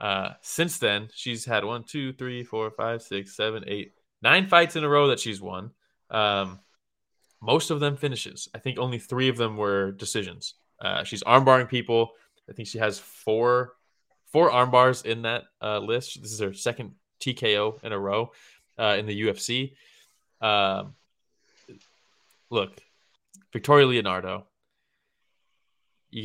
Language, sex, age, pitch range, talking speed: English, male, 20-39, 105-130 Hz, 155 wpm